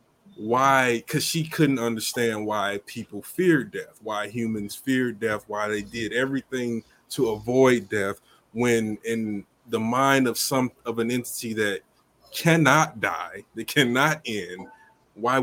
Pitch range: 105-125 Hz